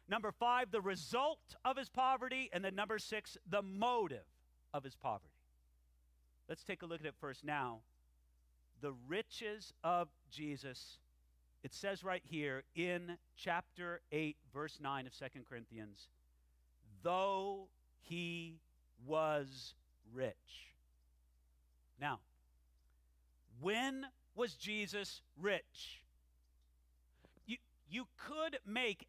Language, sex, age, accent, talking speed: English, male, 50-69, American, 110 wpm